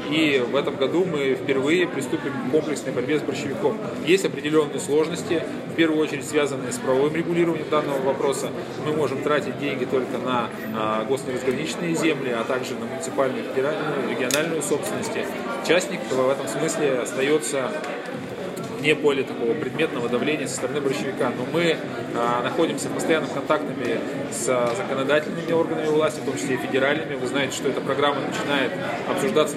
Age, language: 20-39, Russian